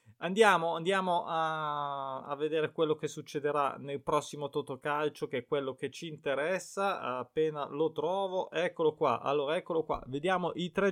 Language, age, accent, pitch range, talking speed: Italian, 20-39, native, 155-195 Hz, 155 wpm